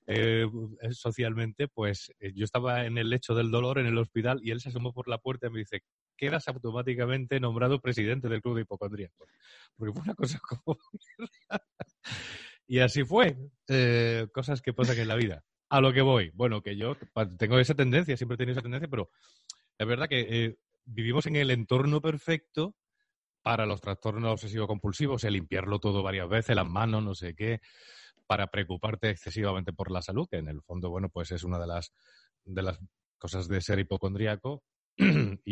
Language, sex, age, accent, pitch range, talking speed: Spanish, male, 30-49, Spanish, 100-130 Hz, 180 wpm